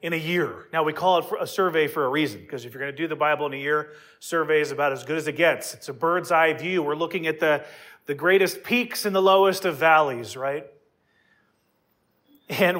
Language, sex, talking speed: English, male, 235 wpm